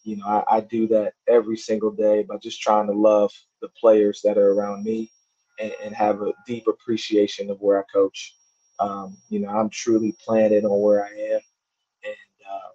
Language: English